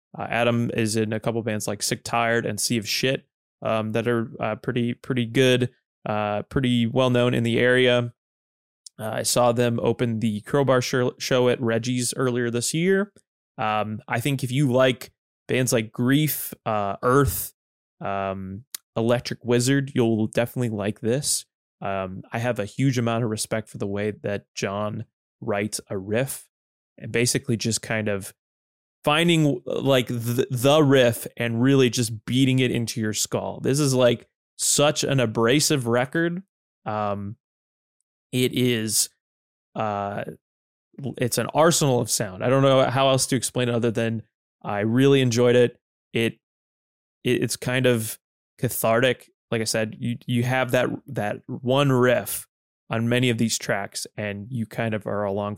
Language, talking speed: English, 160 wpm